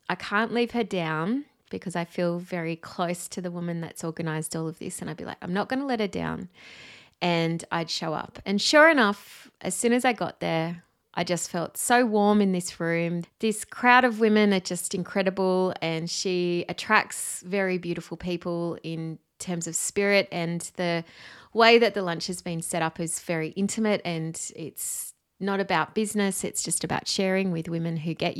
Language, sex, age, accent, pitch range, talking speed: English, female, 20-39, Australian, 170-210 Hz, 195 wpm